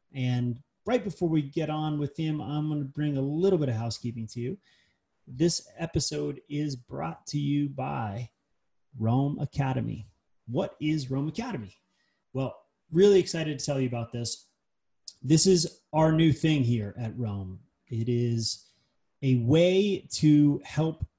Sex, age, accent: male, 30-49, American